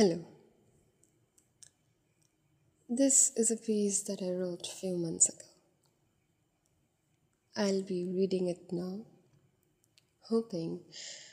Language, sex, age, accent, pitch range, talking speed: English, female, 20-39, Indian, 180-215 Hz, 95 wpm